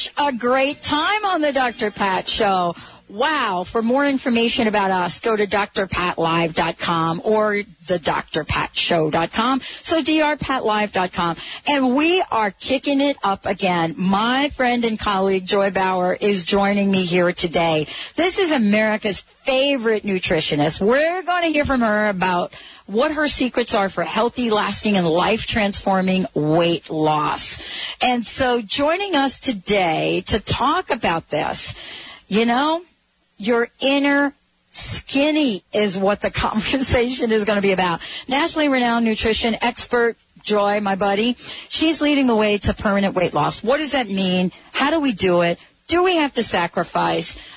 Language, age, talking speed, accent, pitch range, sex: English, 50-69, 145 wpm, American, 190-265 Hz, female